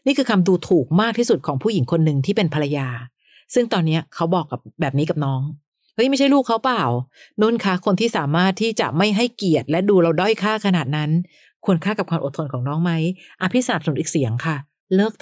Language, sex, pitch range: Thai, female, 150-200 Hz